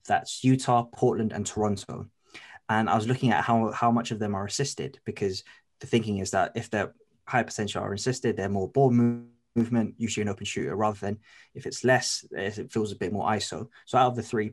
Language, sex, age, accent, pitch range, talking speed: English, male, 20-39, British, 100-115 Hz, 220 wpm